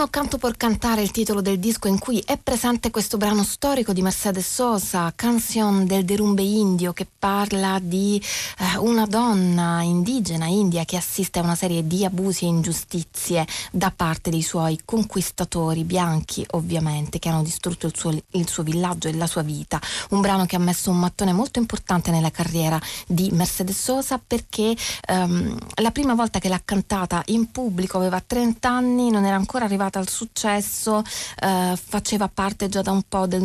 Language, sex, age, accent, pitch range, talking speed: Italian, female, 30-49, native, 165-205 Hz, 175 wpm